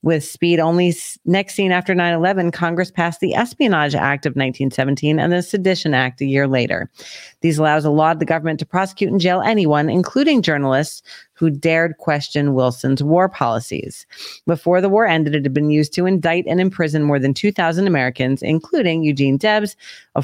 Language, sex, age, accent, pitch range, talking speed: English, female, 40-59, American, 140-175 Hz, 180 wpm